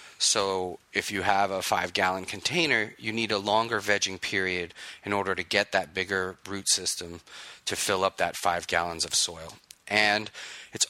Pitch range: 90-100 Hz